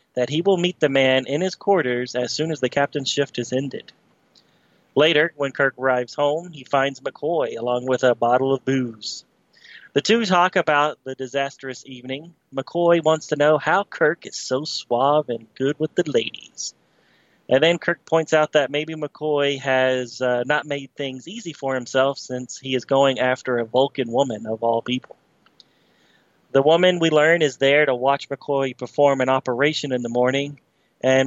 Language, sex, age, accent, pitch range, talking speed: English, male, 30-49, American, 130-155 Hz, 180 wpm